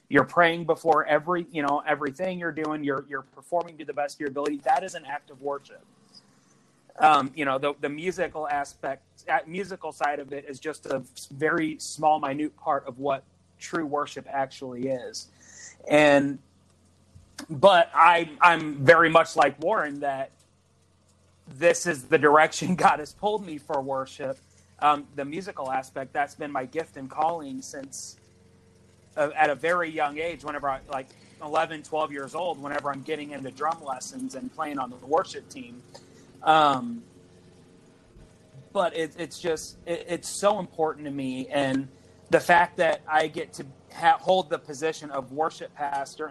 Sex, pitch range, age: male, 135-165 Hz, 30-49